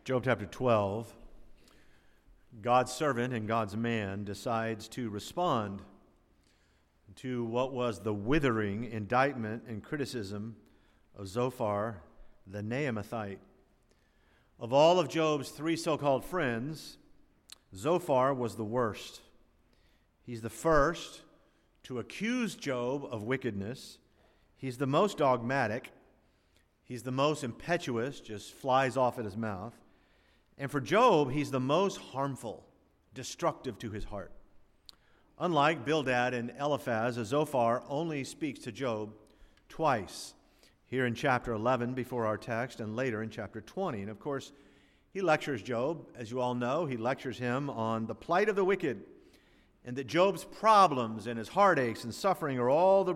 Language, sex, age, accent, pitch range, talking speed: English, male, 50-69, American, 110-140 Hz, 135 wpm